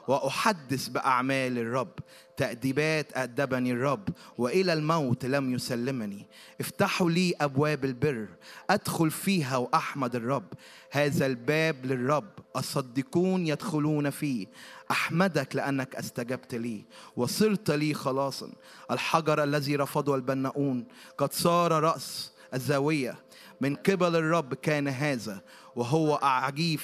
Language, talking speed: Arabic, 105 wpm